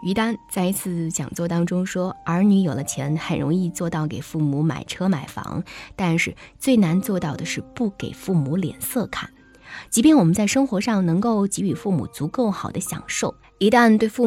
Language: Chinese